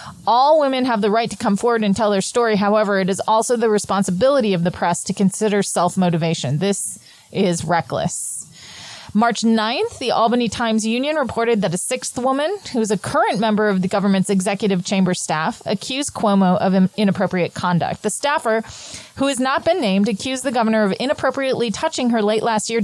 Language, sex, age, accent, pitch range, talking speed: English, female, 30-49, American, 185-230 Hz, 185 wpm